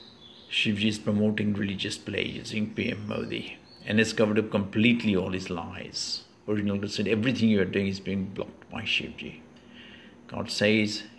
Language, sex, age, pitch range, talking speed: English, male, 50-69, 95-110 Hz, 160 wpm